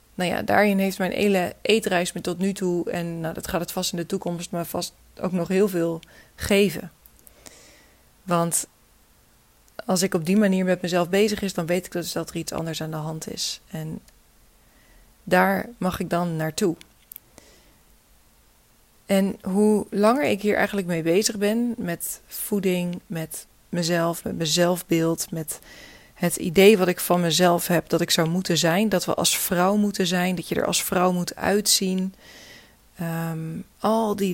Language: Dutch